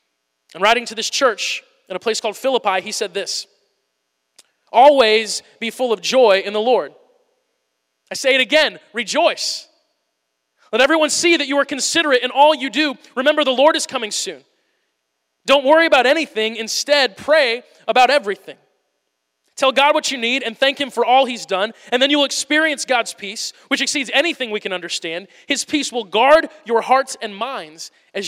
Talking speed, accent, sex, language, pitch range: 180 wpm, American, male, English, 215-285 Hz